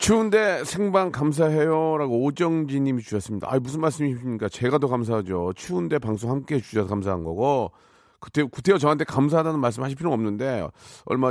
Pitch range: 115-145 Hz